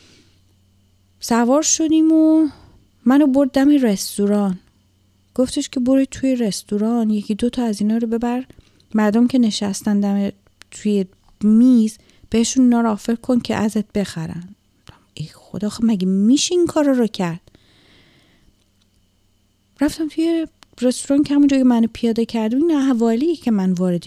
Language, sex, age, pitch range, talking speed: Persian, female, 30-49, 180-245 Hz, 130 wpm